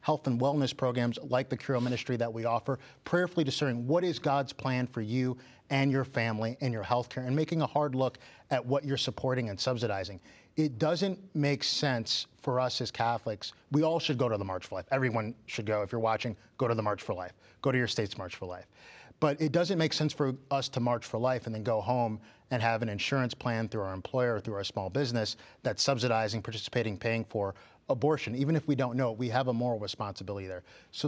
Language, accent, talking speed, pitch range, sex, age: English, American, 230 wpm, 110-135 Hz, male, 30-49